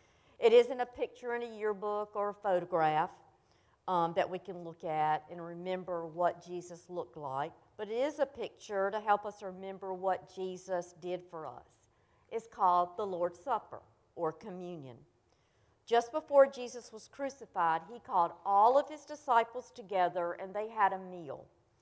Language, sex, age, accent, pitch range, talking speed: English, female, 50-69, American, 170-220 Hz, 165 wpm